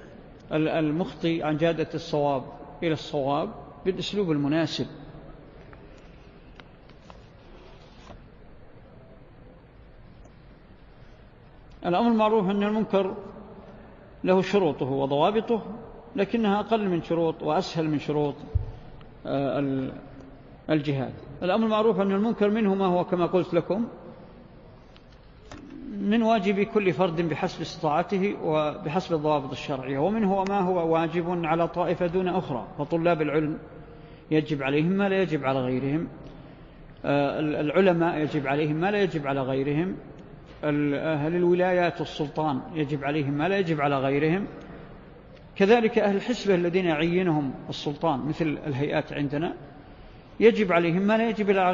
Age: 50-69